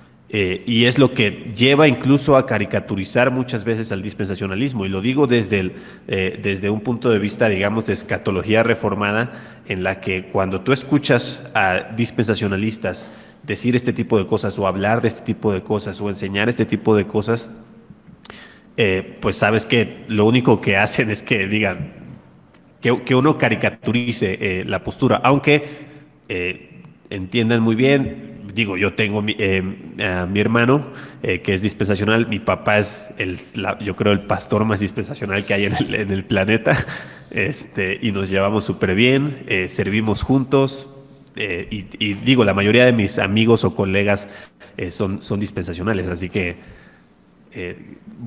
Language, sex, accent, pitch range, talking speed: Spanish, male, Mexican, 100-120 Hz, 165 wpm